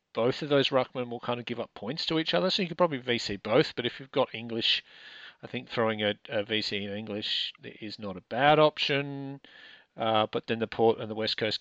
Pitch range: 105-130 Hz